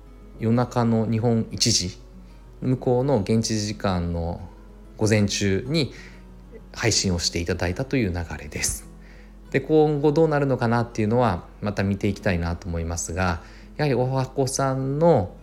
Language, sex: Japanese, male